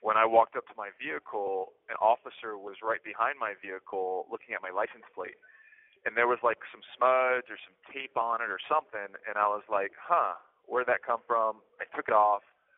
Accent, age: American, 20-39